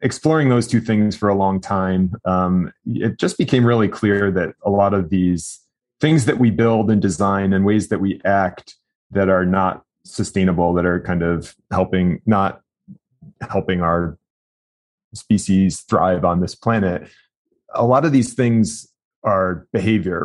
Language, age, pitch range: English, 30-49, 95-110 Hz